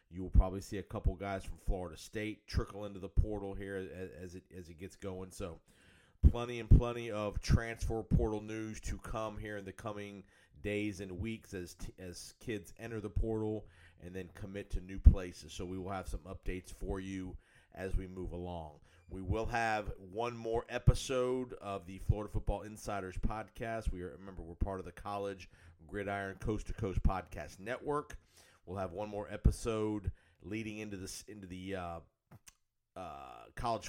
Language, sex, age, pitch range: English, male, 40-59, 90-105 Hz